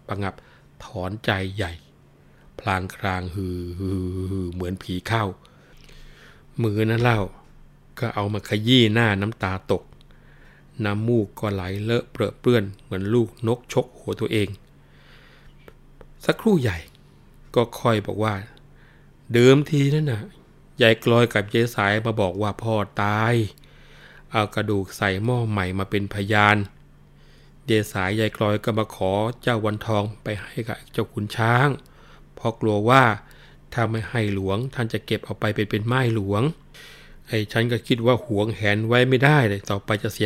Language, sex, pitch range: Thai, male, 100-125 Hz